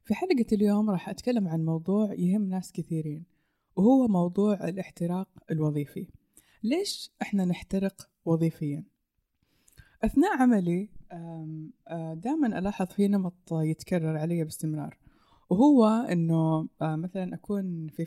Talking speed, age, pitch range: 105 wpm, 20-39, 160-205 Hz